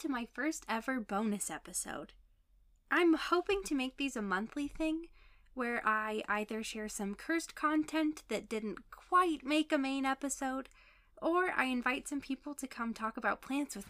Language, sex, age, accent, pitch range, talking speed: English, female, 10-29, American, 200-290 Hz, 165 wpm